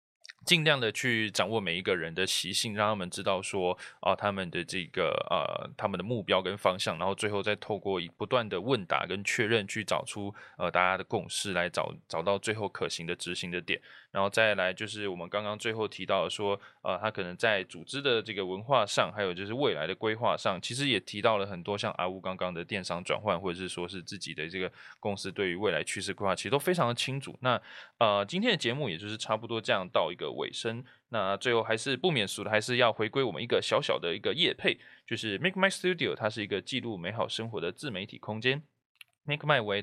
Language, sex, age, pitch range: Chinese, male, 20-39, 100-135 Hz